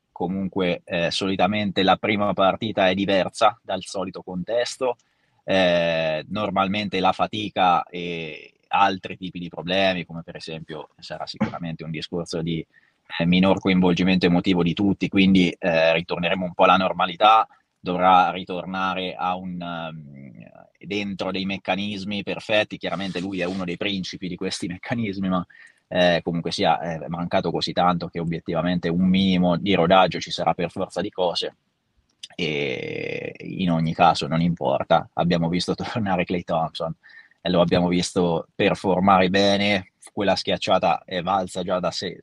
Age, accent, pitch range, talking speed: 20-39, native, 85-95 Hz, 140 wpm